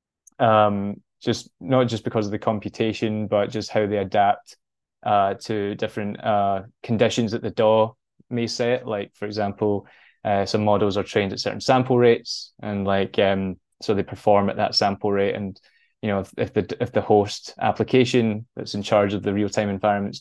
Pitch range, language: 100-115 Hz, English